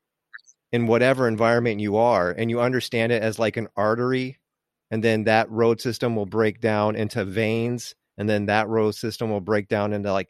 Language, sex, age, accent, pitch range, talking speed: English, male, 30-49, American, 105-125 Hz, 190 wpm